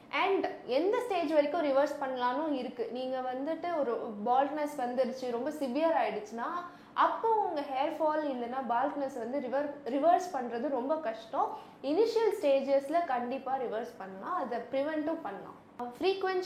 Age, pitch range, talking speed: 20-39, 245-315 Hz, 130 wpm